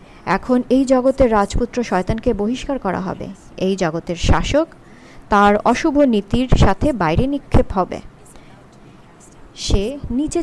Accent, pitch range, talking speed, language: native, 205-275 Hz, 115 wpm, Bengali